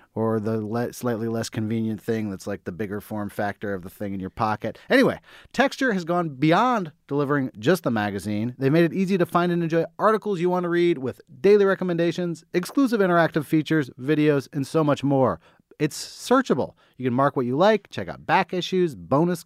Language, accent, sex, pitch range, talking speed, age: English, American, male, 135-185 Hz, 195 wpm, 30-49